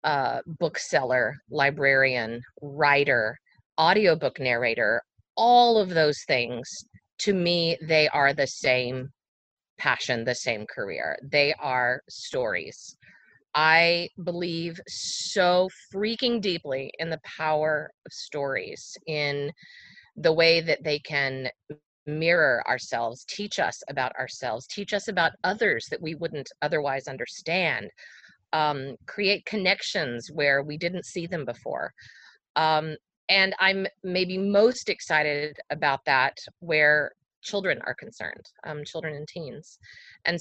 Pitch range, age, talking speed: 150-195 Hz, 30-49, 120 wpm